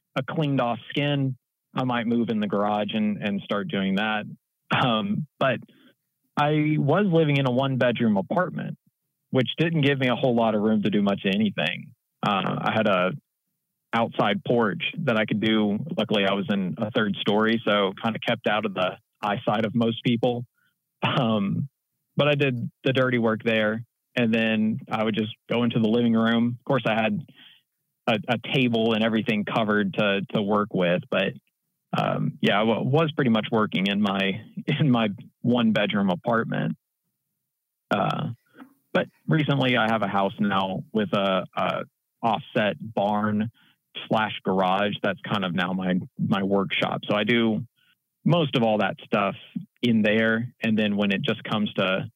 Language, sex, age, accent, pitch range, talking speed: English, male, 30-49, American, 105-130 Hz, 175 wpm